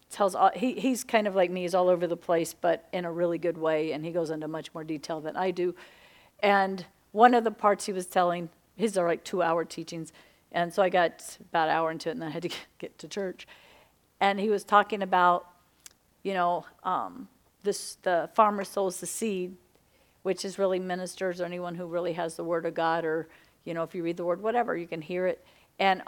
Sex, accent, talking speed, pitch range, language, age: female, American, 230 wpm, 175-205 Hz, English, 50-69